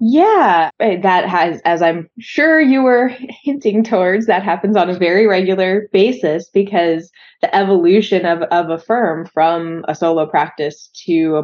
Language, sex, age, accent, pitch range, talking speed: English, female, 20-39, American, 165-215 Hz, 155 wpm